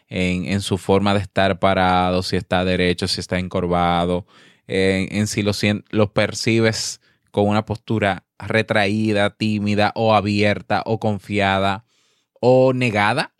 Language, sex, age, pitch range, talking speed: Spanish, male, 20-39, 95-135 Hz, 135 wpm